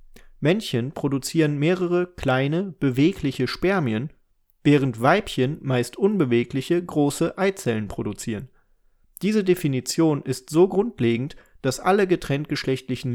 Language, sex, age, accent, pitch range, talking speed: German, male, 40-59, German, 120-160 Hz, 95 wpm